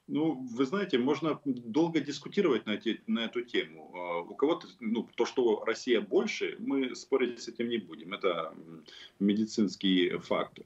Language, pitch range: Russian, 95-135 Hz